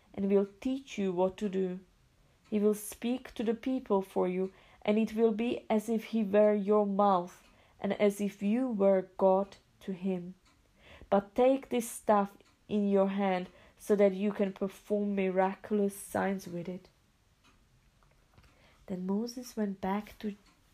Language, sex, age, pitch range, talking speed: English, female, 30-49, 195-225 Hz, 160 wpm